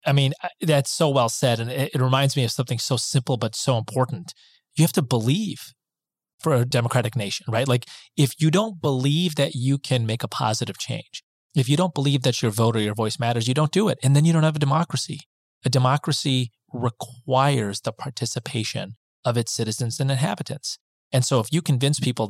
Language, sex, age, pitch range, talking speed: English, male, 30-49, 120-145 Hz, 205 wpm